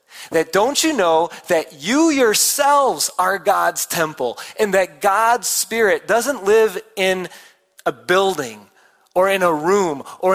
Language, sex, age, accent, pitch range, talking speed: English, male, 30-49, American, 125-195 Hz, 140 wpm